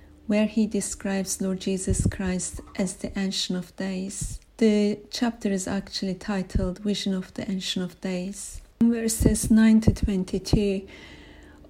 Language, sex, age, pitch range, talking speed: English, female, 40-59, 190-220 Hz, 125 wpm